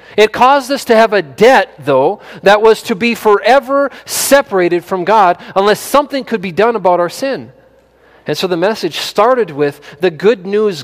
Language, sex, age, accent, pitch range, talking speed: English, male, 40-59, American, 195-265 Hz, 185 wpm